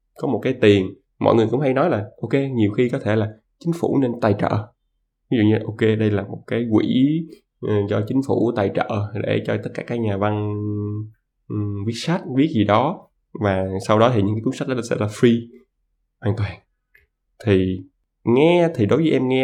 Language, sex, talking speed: Vietnamese, male, 215 wpm